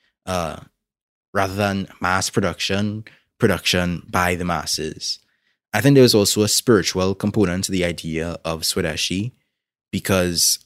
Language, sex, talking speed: English, male, 130 wpm